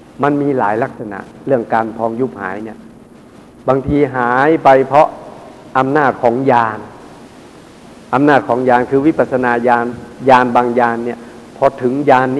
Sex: male